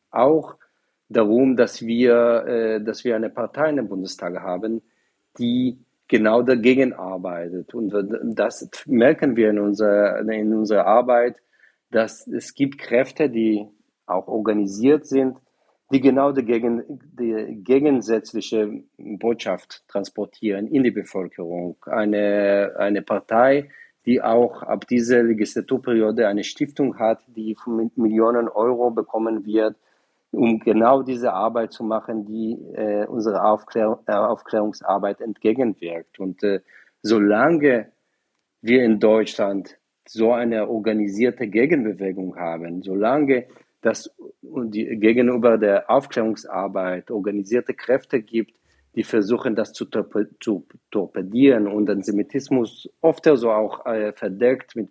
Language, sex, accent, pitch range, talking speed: German, male, German, 105-125 Hz, 120 wpm